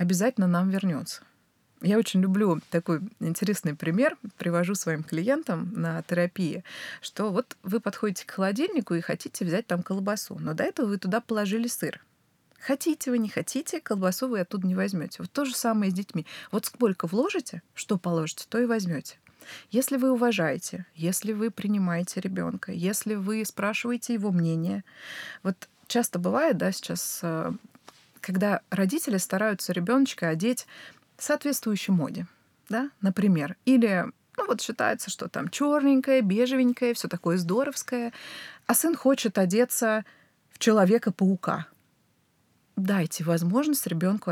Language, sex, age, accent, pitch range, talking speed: Russian, female, 30-49, native, 180-240 Hz, 140 wpm